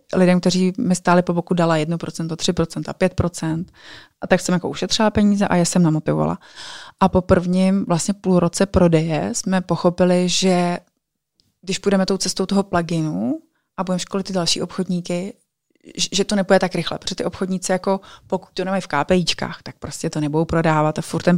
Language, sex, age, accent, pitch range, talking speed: Czech, female, 30-49, native, 170-195 Hz, 180 wpm